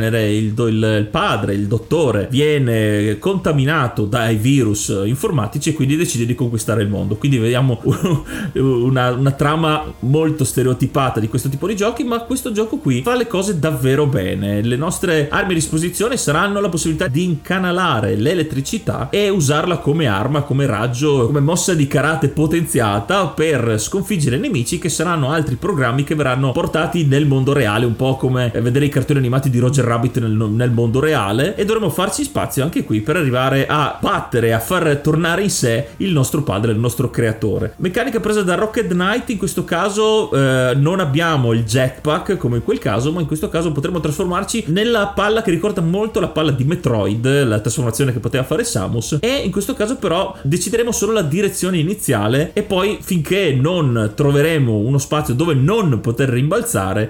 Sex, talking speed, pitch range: male, 175 wpm, 125-175 Hz